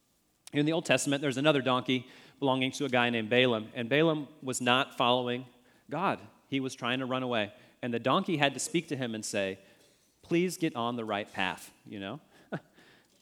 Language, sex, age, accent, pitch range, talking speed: English, male, 30-49, American, 115-155 Hz, 195 wpm